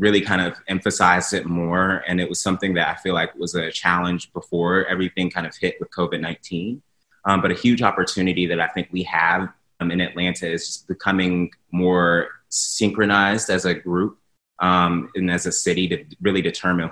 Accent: American